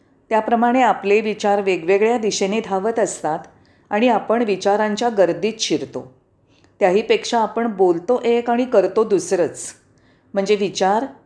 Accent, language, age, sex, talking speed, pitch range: native, Marathi, 40-59, female, 110 wpm, 170-245 Hz